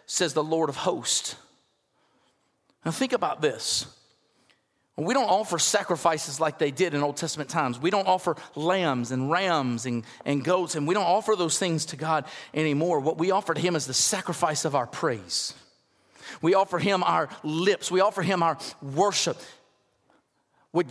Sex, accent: male, American